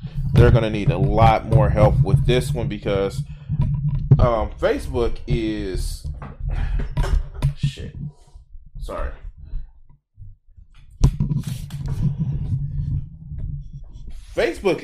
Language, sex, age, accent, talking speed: English, male, 20-39, American, 70 wpm